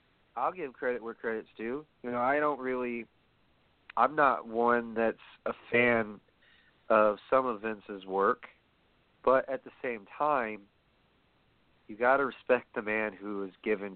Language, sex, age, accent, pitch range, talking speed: English, male, 40-59, American, 105-125 Hz, 155 wpm